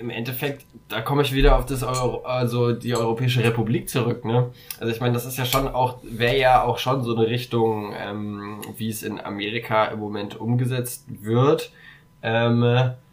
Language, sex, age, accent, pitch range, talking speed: German, male, 10-29, German, 115-135 Hz, 185 wpm